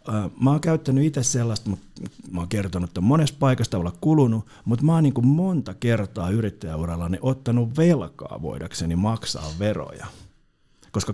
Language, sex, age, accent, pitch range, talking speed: Finnish, male, 50-69, native, 90-135 Hz, 120 wpm